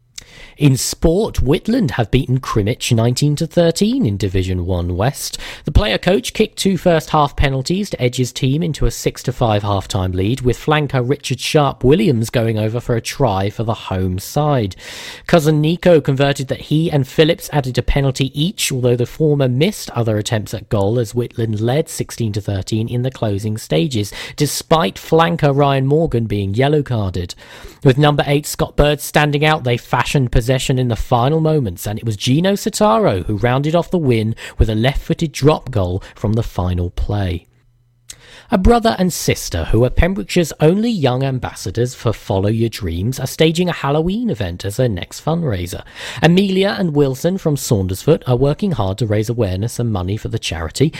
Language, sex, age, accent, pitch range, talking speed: English, male, 40-59, British, 110-155 Hz, 170 wpm